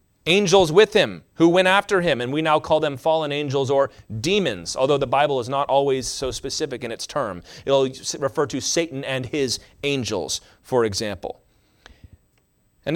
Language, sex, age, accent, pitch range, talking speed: English, male, 30-49, American, 130-185 Hz, 175 wpm